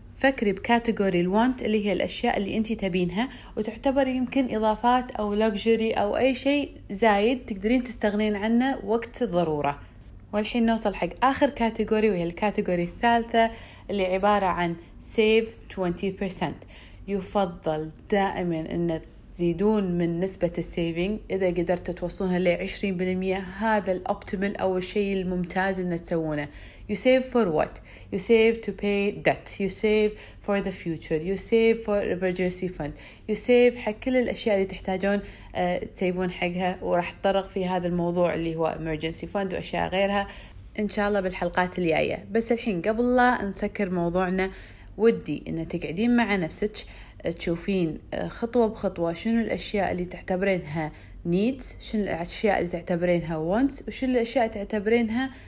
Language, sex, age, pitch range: Arabic, female, 30-49, 175-225 Hz